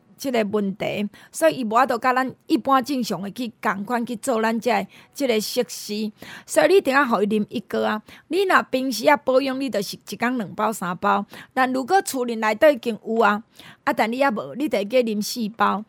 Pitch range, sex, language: 210-275 Hz, female, Chinese